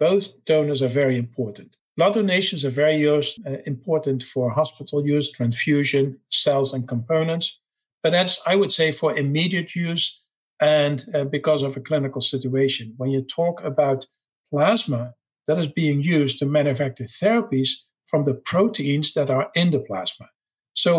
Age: 50-69